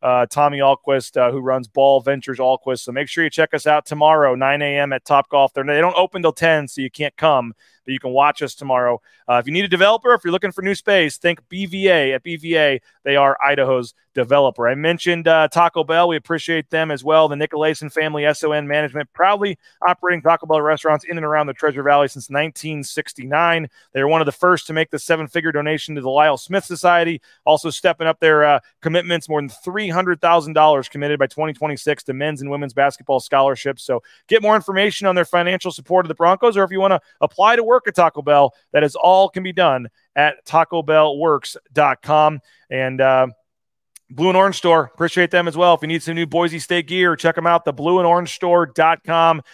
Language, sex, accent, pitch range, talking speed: English, male, American, 140-175 Hz, 210 wpm